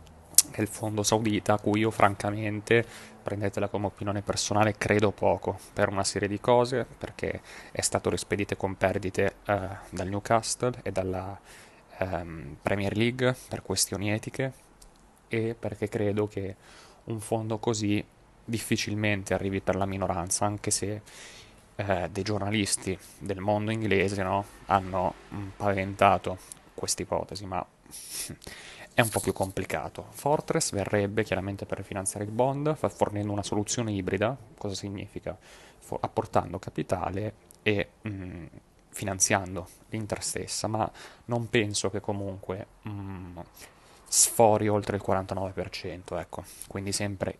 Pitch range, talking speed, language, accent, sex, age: 95-110 Hz, 125 wpm, Italian, native, male, 20-39